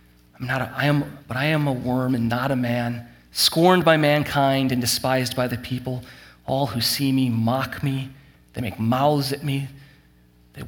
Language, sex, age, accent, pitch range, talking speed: English, male, 30-49, American, 120-145 Hz, 185 wpm